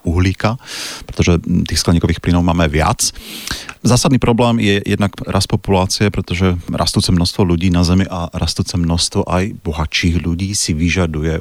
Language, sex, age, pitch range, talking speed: Slovak, male, 40-59, 85-100 Hz, 140 wpm